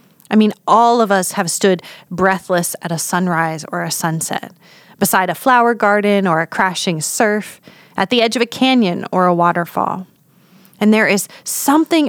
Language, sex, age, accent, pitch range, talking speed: English, female, 30-49, American, 180-225 Hz, 175 wpm